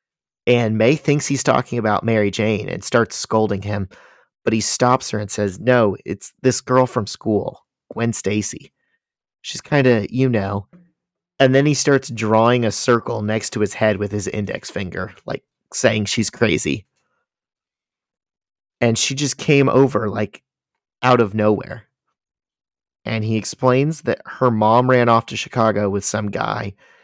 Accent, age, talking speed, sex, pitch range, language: American, 40-59, 160 wpm, male, 105-130 Hz, English